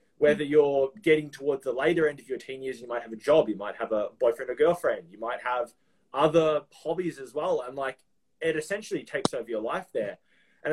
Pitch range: 135-195 Hz